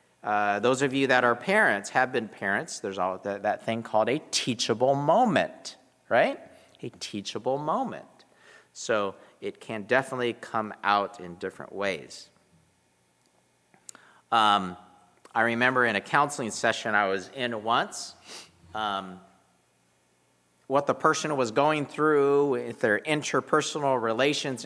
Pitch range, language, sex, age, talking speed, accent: 95-135 Hz, English, male, 40-59, 130 wpm, American